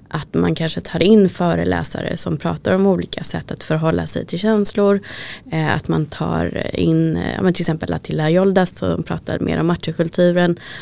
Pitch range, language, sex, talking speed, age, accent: 155-190 Hz, Swedish, female, 165 wpm, 20-39, native